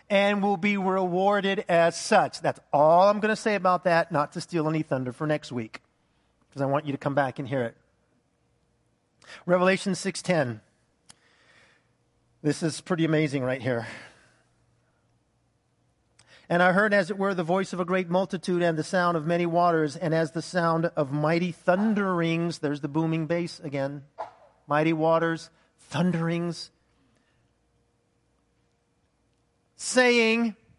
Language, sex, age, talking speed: English, male, 40-59, 145 wpm